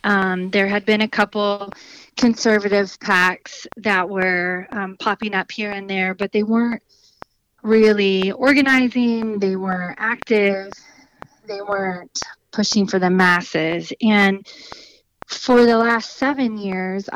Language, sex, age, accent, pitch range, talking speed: English, female, 30-49, American, 185-215 Hz, 125 wpm